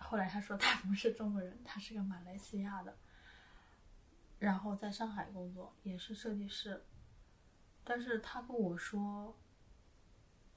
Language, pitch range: Chinese, 175-205 Hz